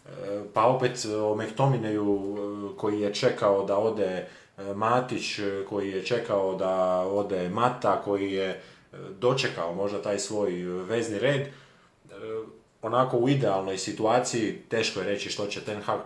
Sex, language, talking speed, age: male, Croatian, 130 wpm, 30-49